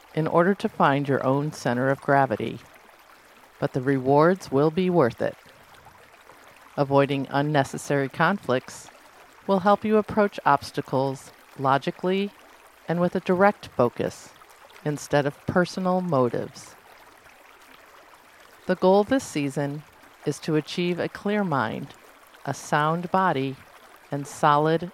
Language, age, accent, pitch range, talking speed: English, 50-69, American, 140-180 Hz, 120 wpm